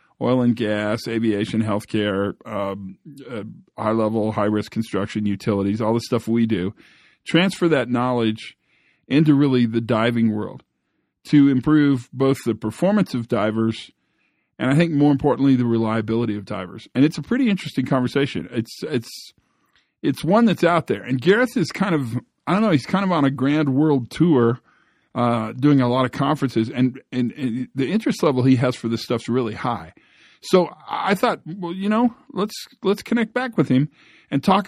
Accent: American